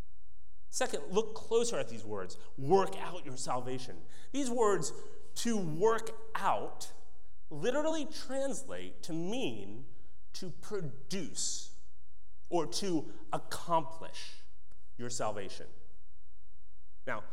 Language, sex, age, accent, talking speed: English, male, 30-49, American, 95 wpm